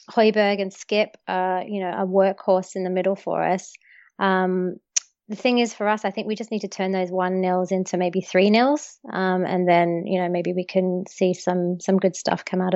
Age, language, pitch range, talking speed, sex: 20-39, English, 185-220 Hz, 210 wpm, female